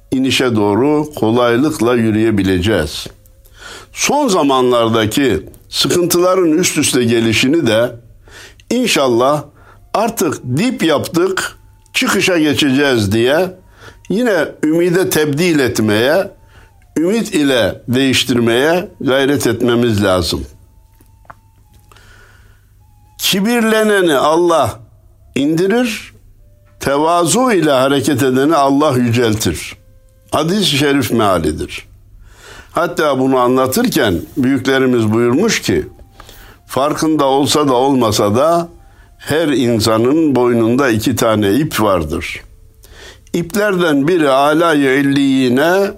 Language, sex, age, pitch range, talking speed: Turkish, male, 60-79, 105-145 Hz, 80 wpm